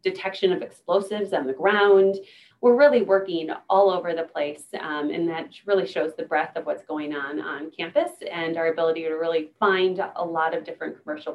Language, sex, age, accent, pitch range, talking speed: English, female, 30-49, American, 155-195 Hz, 195 wpm